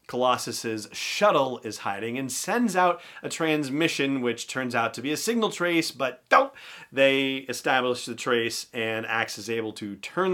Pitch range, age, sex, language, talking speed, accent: 115-150 Hz, 40-59, male, English, 170 wpm, American